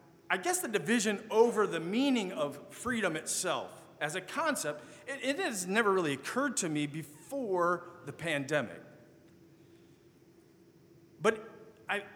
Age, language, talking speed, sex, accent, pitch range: 40-59, English, 130 wpm, male, American, 175-240 Hz